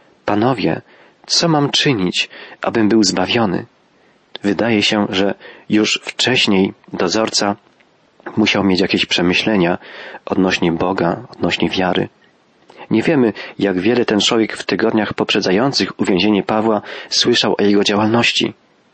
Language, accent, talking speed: Polish, native, 115 wpm